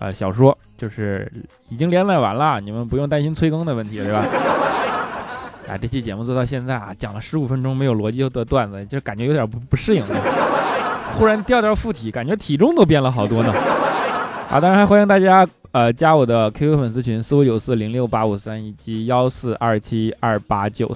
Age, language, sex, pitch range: 20-39, Chinese, male, 110-155 Hz